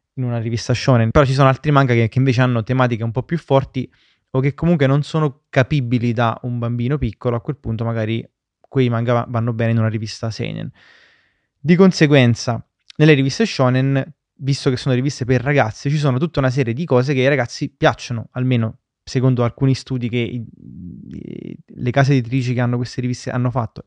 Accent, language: native, Italian